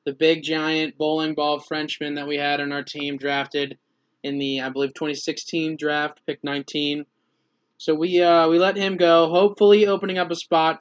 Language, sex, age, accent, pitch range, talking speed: English, male, 20-39, American, 140-160 Hz, 185 wpm